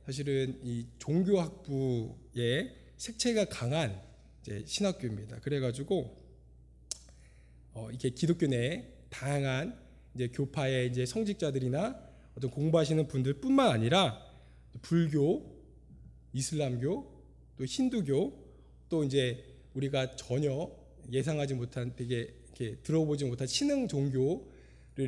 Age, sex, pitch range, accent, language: 20-39, male, 115-185 Hz, native, Korean